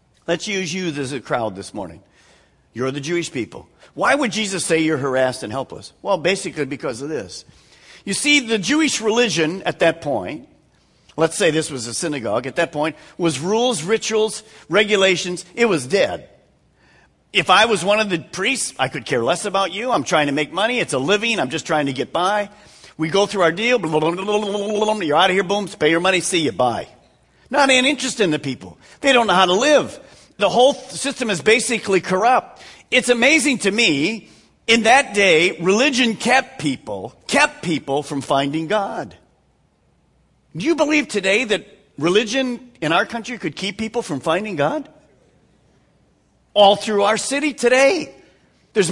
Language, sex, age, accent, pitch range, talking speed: English, male, 50-69, American, 160-235 Hz, 180 wpm